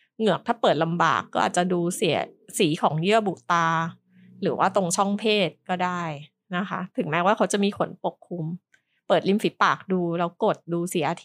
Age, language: 20-39, Thai